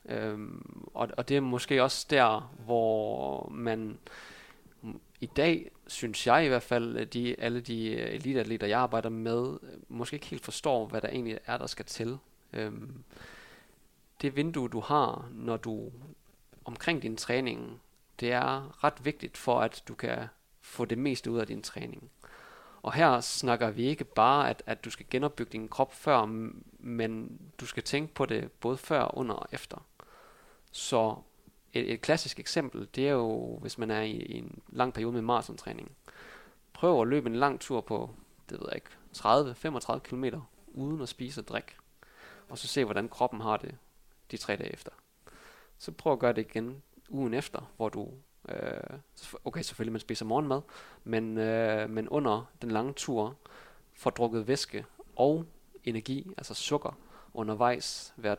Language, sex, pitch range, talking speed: Danish, male, 110-135 Hz, 165 wpm